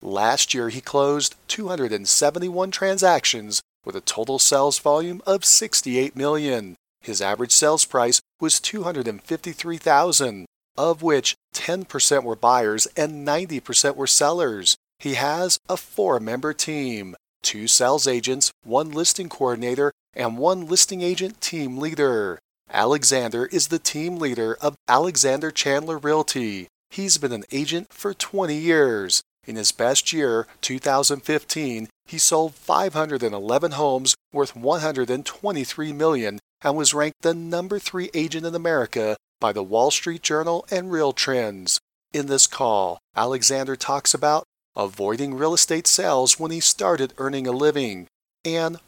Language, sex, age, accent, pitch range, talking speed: English, male, 40-59, American, 130-170 Hz, 145 wpm